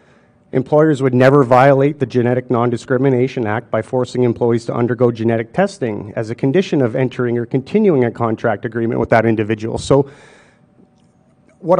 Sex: male